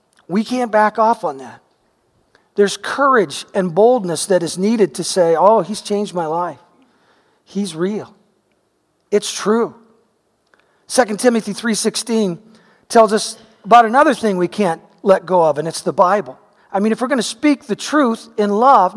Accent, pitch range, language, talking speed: American, 190-245 Hz, English, 160 wpm